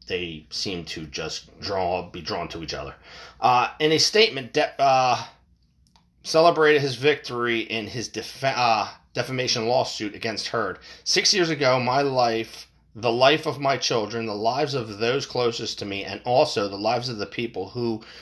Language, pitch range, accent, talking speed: English, 110-150 Hz, American, 170 wpm